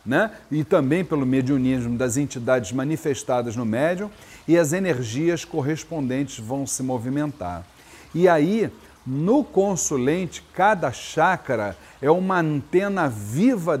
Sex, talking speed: male, 115 wpm